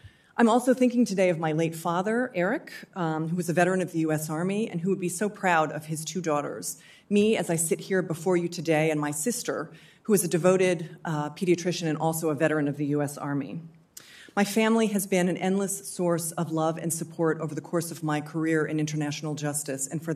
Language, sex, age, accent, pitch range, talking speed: English, female, 40-59, American, 155-195 Hz, 225 wpm